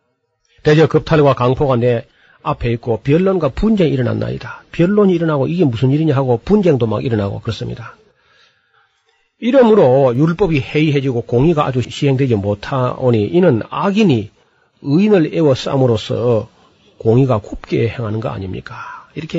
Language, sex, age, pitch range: Korean, male, 40-59, 115-150 Hz